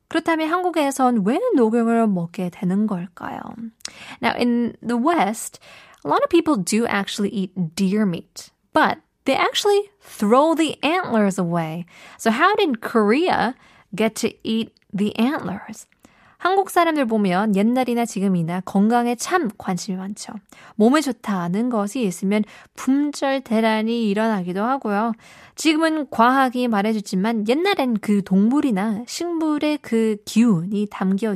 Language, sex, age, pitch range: Korean, female, 20-39, 195-260 Hz